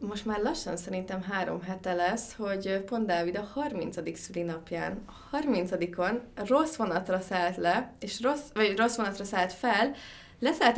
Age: 20-39